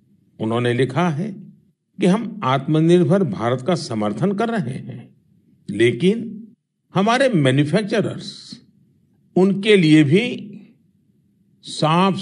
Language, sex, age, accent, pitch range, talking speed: Kannada, male, 50-69, native, 135-185 Hz, 95 wpm